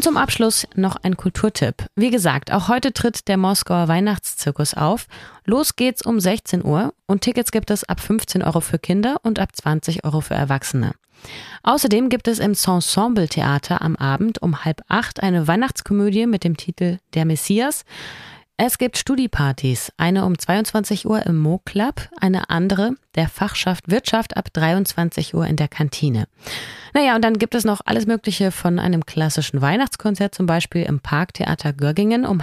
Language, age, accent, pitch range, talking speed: German, 30-49, German, 155-220 Hz, 170 wpm